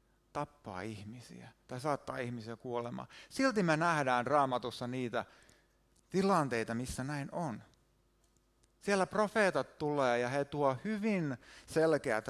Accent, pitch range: native, 120-155 Hz